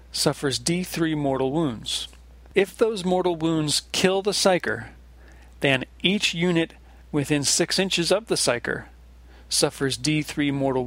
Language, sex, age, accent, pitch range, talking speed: English, male, 40-59, American, 130-165 Hz, 125 wpm